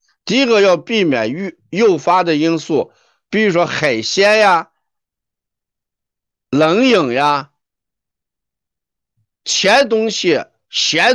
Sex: male